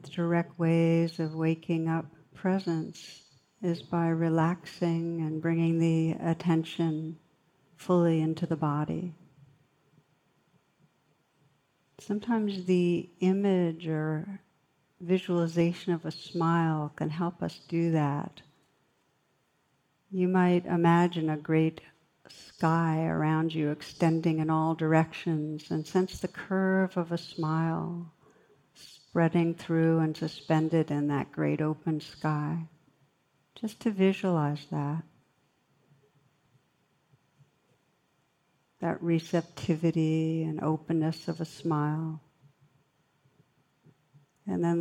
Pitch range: 150-170 Hz